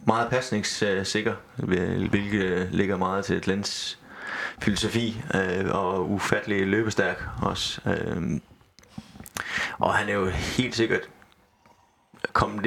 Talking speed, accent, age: 90 wpm, native, 20-39